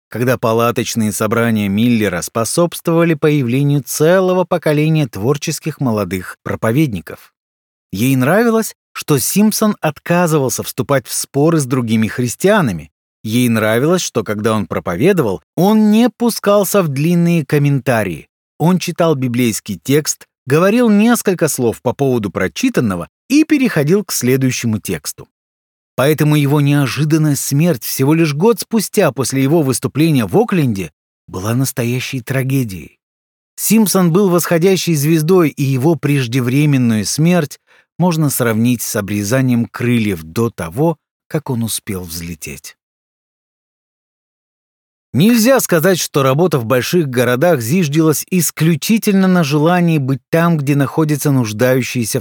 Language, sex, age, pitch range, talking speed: Russian, male, 30-49, 115-170 Hz, 115 wpm